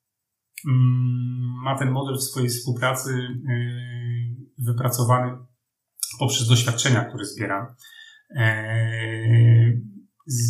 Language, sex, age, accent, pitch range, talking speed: Polish, male, 30-49, native, 120-130 Hz, 70 wpm